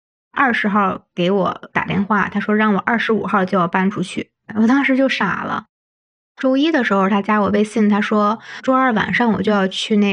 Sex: female